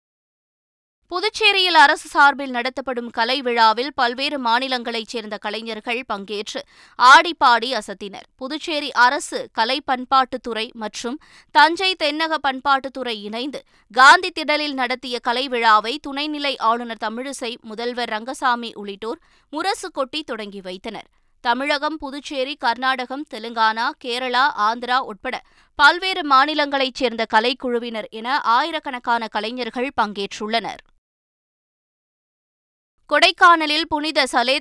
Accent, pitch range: native, 235-290 Hz